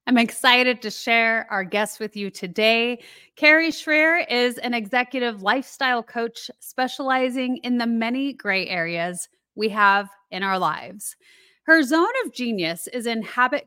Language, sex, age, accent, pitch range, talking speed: English, female, 30-49, American, 205-265 Hz, 150 wpm